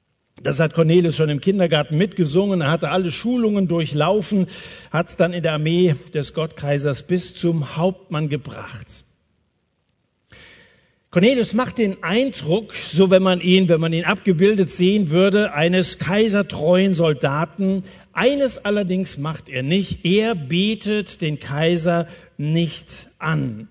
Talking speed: 130 wpm